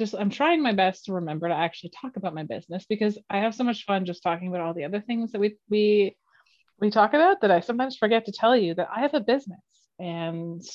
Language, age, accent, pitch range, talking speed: English, 30-49, American, 165-205 Hz, 250 wpm